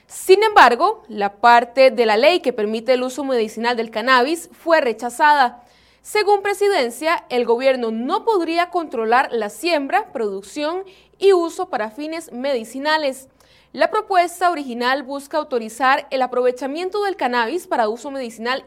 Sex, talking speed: female, 140 wpm